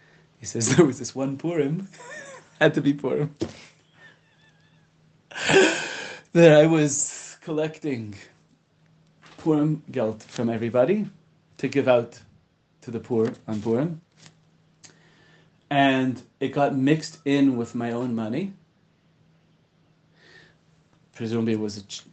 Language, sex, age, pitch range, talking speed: English, male, 30-49, 120-160 Hz, 110 wpm